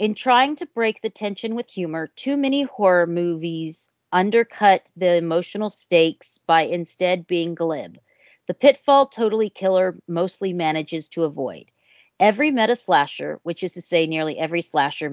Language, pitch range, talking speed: English, 160-210 Hz, 150 wpm